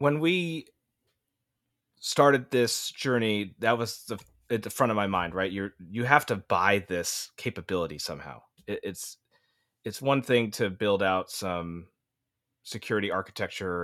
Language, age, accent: English, 30-49, American